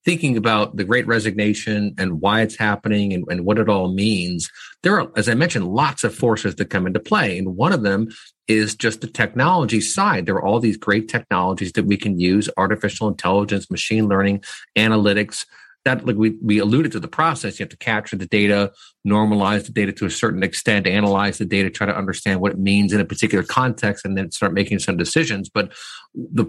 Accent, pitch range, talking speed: American, 100-115 Hz, 210 wpm